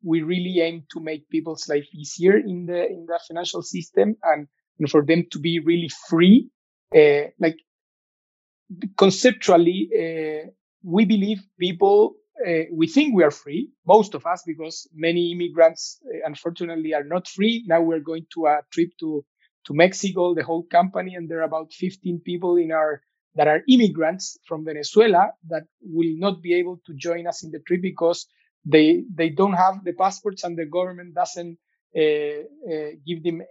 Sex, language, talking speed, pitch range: male, English, 175 wpm, 160-200 Hz